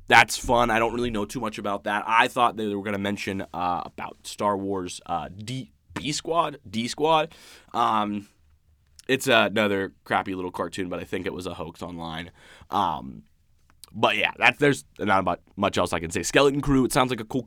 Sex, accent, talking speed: male, American, 180 wpm